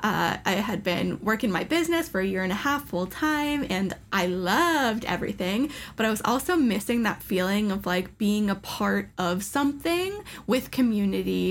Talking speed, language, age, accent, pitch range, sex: 185 wpm, English, 10-29, American, 190-255 Hz, female